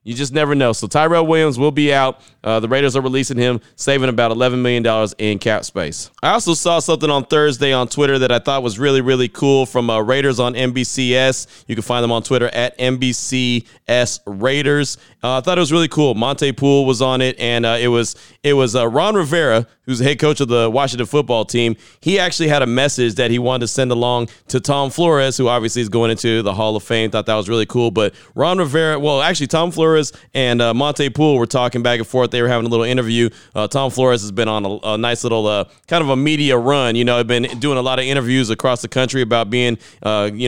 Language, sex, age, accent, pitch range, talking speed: English, male, 30-49, American, 120-140 Hz, 240 wpm